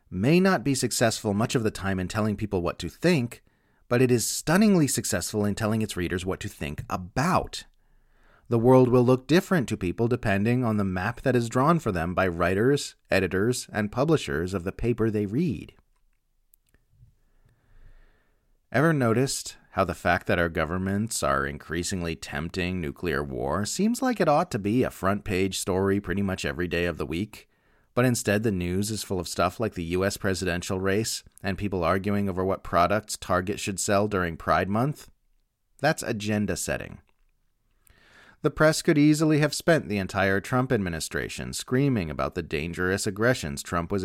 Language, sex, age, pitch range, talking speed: English, male, 30-49, 90-120 Hz, 175 wpm